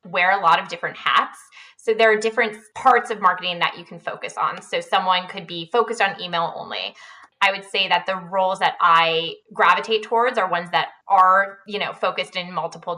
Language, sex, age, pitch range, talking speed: English, female, 20-39, 170-220 Hz, 210 wpm